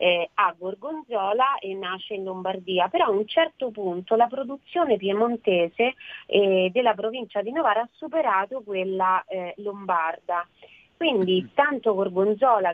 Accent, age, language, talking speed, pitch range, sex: native, 30-49, Italian, 120 wpm, 180-225 Hz, female